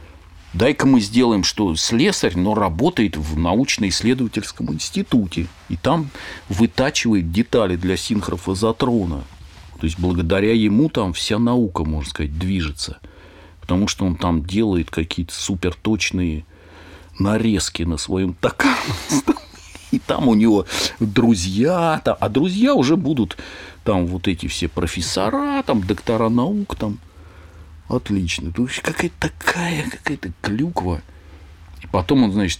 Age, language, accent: 40-59, Russian, native